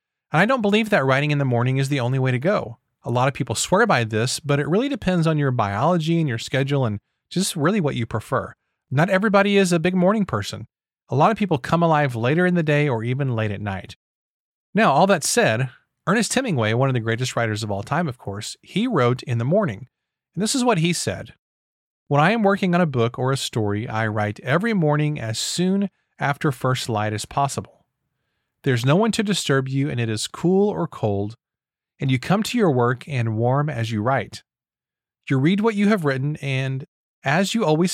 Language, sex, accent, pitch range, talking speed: English, male, American, 120-175 Hz, 225 wpm